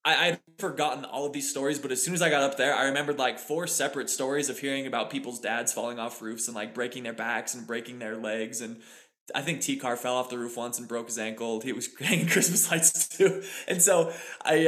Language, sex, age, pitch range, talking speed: English, male, 20-39, 120-150 Hz, 250 wpm